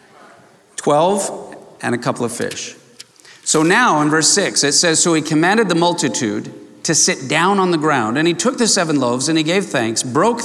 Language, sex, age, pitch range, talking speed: English, male, 50-69, 135-185 Hz, 200 wpm